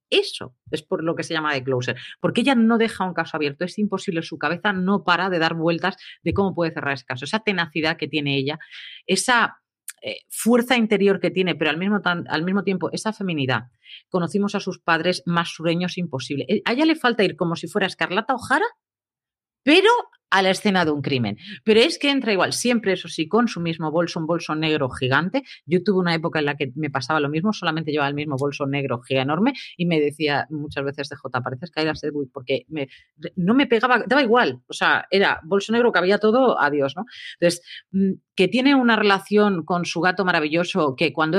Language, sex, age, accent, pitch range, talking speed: Spanish, female, 40-59, Spanish, 150-205 Hz, 215 wpm